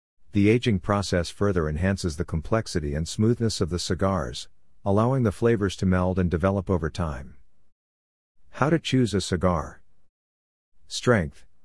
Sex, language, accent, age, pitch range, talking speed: male, English, American, 50-69, 85-100 Hz, 140 wpm